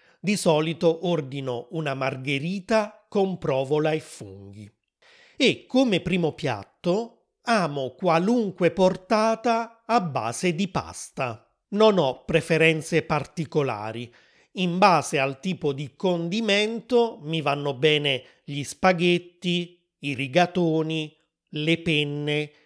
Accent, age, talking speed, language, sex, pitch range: native, 30-49, 105 wpm, Italian, male, 150-190 Hz